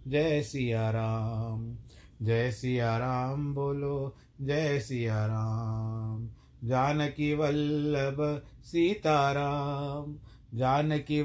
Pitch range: 115-145 Hz